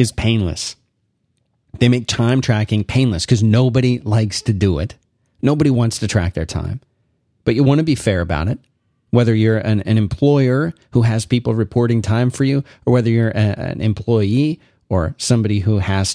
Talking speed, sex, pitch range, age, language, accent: 180 wpm, male, 105-130 Hz, 30-49, English, American